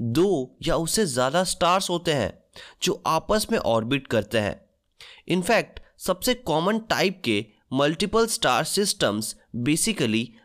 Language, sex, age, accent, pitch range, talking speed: Hindi, male, 20-39, native, 115-175 Hz, 125 wpm